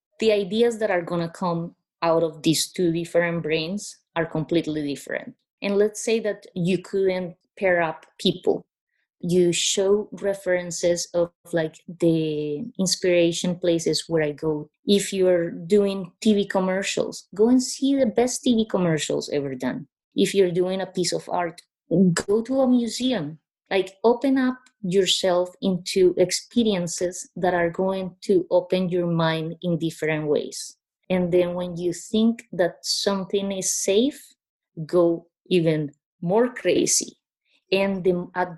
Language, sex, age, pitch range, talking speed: English, female, 20-39, 165-200 Hz, 145 wpm